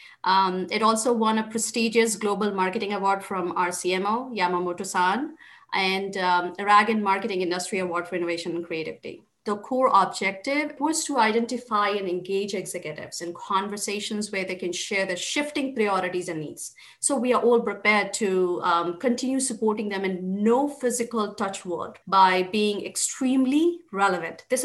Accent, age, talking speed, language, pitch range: Indian, 30-49, 155 wpm, English, 190-245 Hz